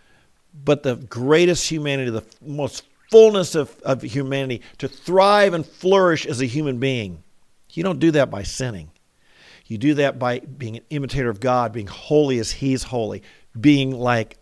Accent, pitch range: American, 130-160 Hz